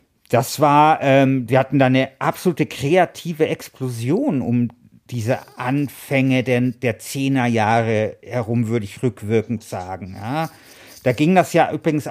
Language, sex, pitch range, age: German, male, 130-160 Hz, 50-69